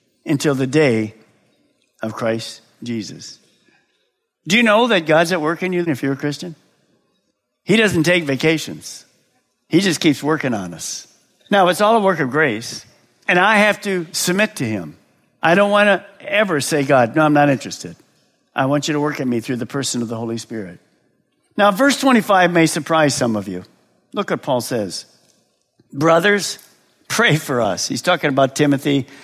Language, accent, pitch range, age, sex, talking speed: English, American, 130-180 Hz, 50-69, male, 180 wpm